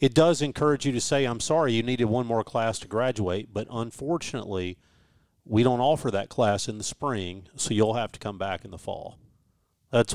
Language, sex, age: English, male, 40-59